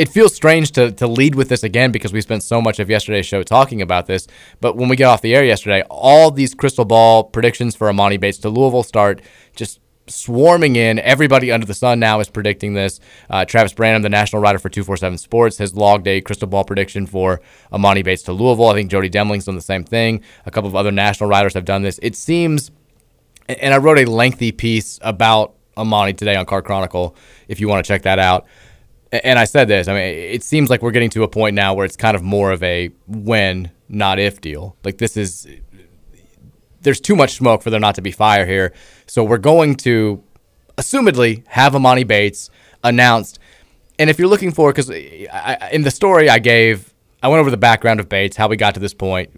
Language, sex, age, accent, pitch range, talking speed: English, male, 20-39, American, 100-125 Hz, 220 wpm